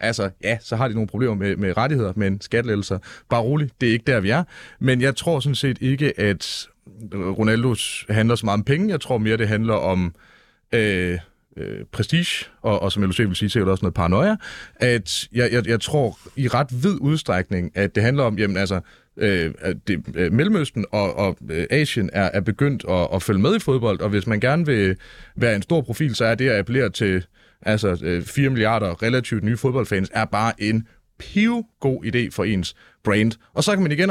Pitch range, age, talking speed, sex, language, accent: 95-130 Hz, 30-49, 210 wpm, male, Danish, native